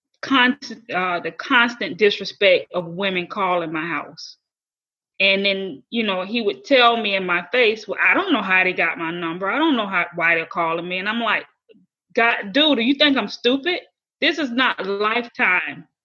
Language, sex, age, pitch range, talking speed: English, female, 20-39, 185-235 Hz, 200 wpm